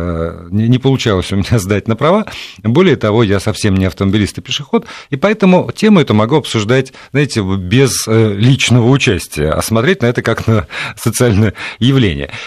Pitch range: 105-145 Hz